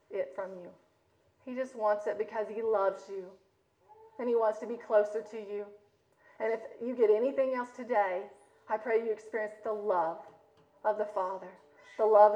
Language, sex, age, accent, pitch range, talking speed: English, female, 30-49, American, 210-240 Hz, 175 wpm